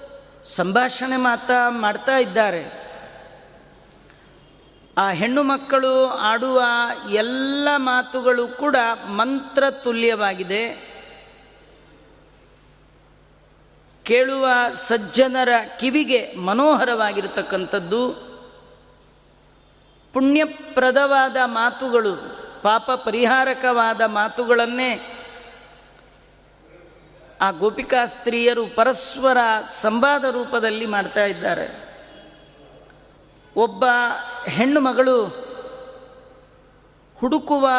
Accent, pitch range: native, 225-260 Hz